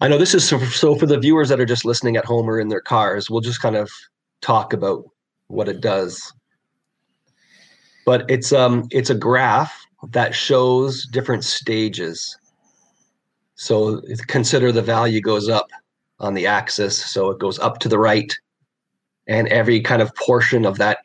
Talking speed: 170 wpm